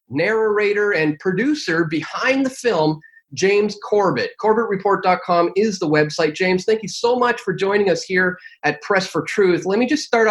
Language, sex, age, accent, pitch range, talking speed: English, male, 30-49, American, 170-225 Hz, 175 wpm